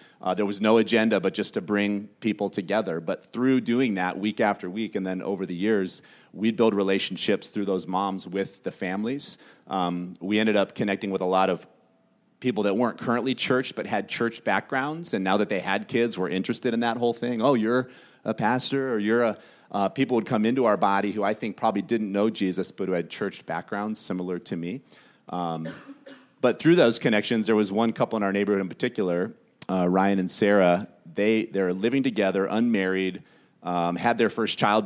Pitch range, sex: 90-110 Hz, male